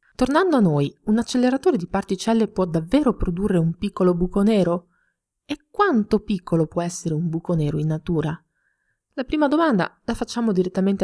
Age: 30-49